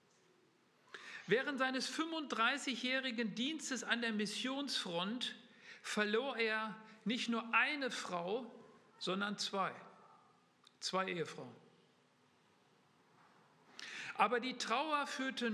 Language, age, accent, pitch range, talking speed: German, 50-69, German, 185-240 Hz, 80 wpm